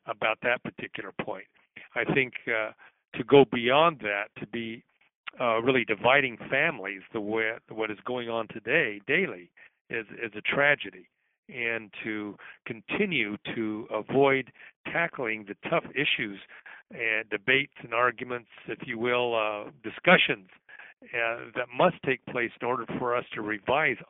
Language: English